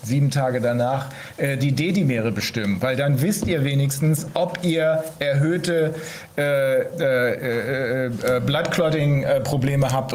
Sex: male